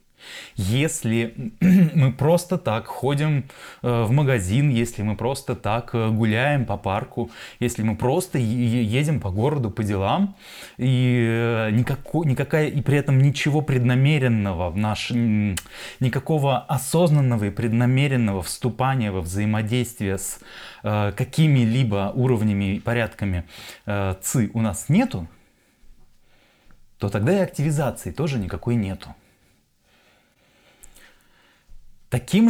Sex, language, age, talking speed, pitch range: male, Russian, 20-39, 105 wpm, 105-140 Hz